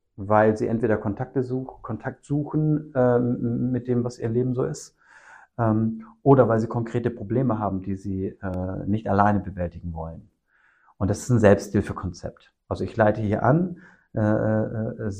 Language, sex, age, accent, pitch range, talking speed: German, male, 50-69, German, 95-120 Hz, 160 wpm